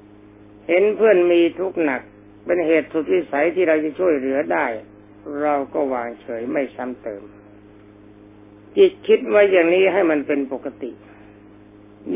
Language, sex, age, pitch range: Thai, male, 60-79, 105-165 Hz